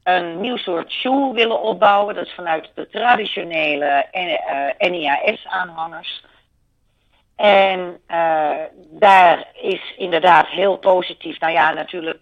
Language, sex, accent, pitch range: Dutch, female, Dutch, 155-195 Hz